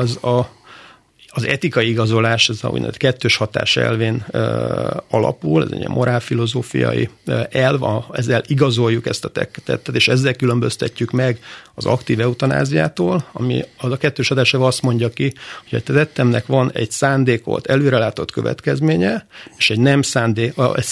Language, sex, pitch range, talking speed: Hungarian, male, 115-135 Hz, 145 wpm